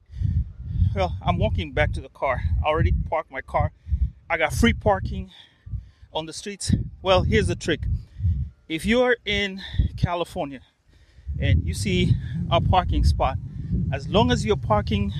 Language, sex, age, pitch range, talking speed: Swahili, male, 30-49, 90-135 Hz, 160 wpm